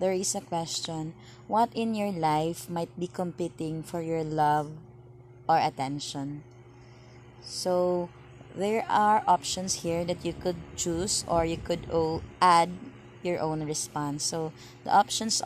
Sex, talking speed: female, 135 wpm